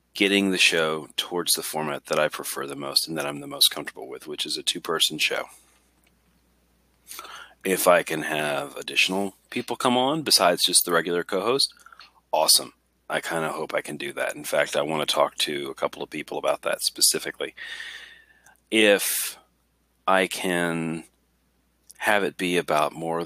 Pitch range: 70-100 Hz